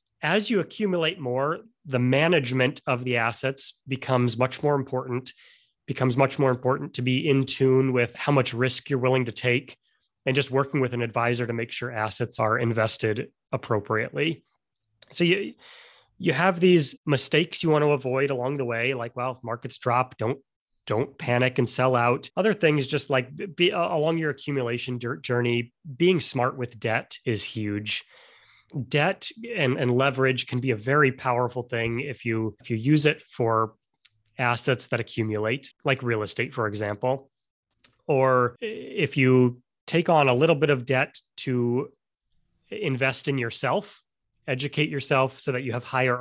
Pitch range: 120-145 Hz